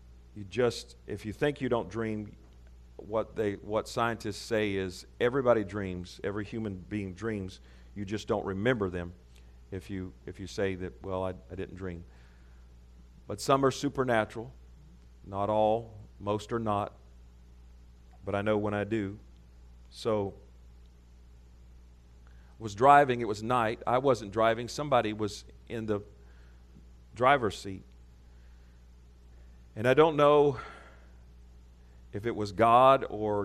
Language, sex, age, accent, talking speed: English, male, 40-59, American, 135 wpm